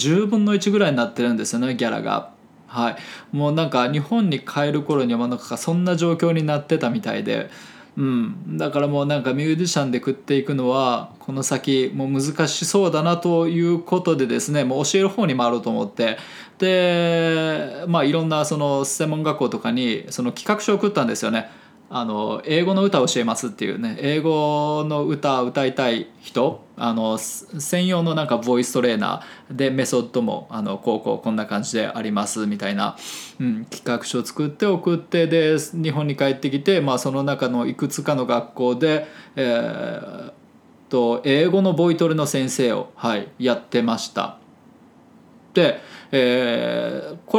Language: Japanese